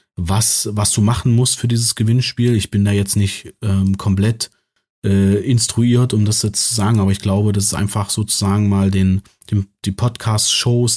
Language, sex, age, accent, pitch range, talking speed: German, male, 30-49, German, 100-120 Hz, 185 wpm